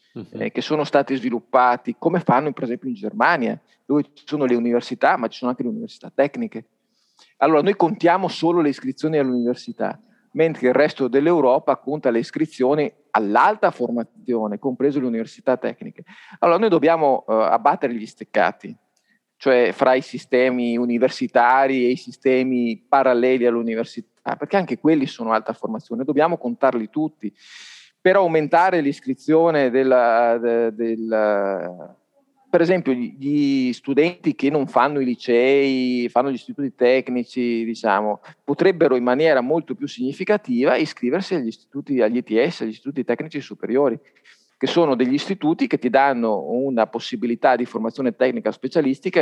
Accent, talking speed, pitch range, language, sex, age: native, 145 wpm, 120-150 Hz, Italian, male, 40-59